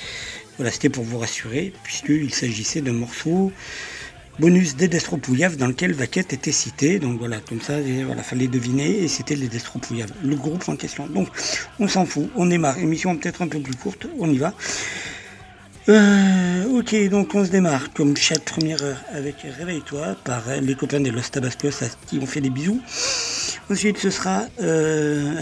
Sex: male